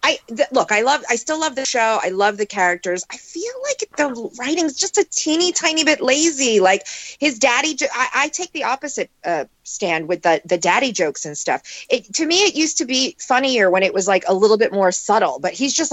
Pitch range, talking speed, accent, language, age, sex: 185-285 Hz, 235 wpm, American, English, 30-49, female